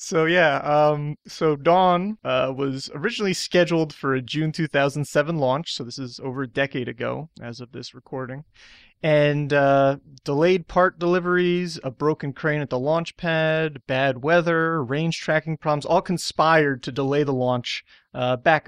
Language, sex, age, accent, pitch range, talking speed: English, male, 30-49, American, 130-160 Hz, 160 wpm